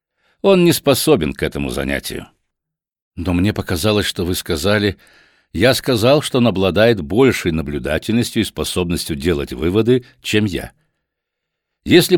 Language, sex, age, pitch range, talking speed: Russian, male, 60-79, 95-145 Hz, 130 wpm